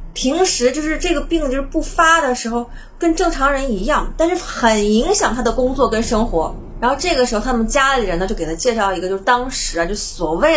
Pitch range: 205-280 Hz